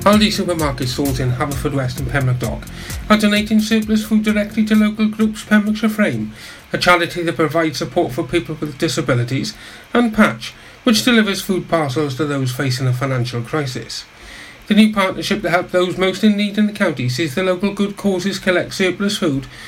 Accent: British